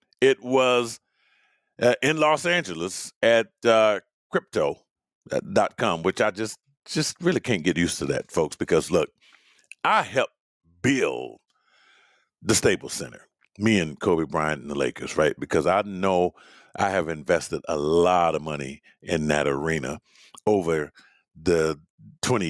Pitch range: 100-150 Hz